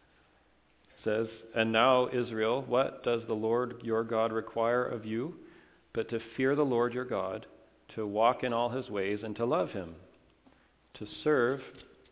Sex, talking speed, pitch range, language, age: male, 160 wpm, 100-120 Hz, English, 40-59